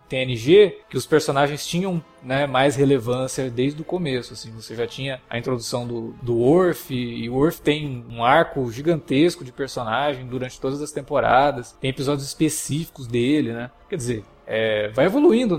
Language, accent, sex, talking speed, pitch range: Portuguese, Brazilian, male, 160 wpm, 130-180 Hz